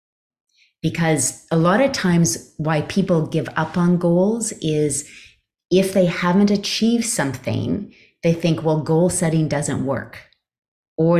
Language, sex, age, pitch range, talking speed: English, female, 30-49, 145-180 Hz, 135 wpm